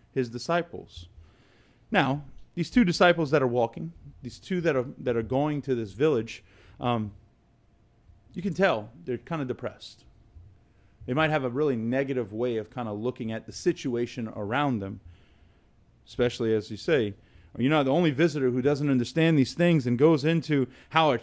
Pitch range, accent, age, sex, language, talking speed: 115-160 Hz, American, 30-49, male, English, 175 wpm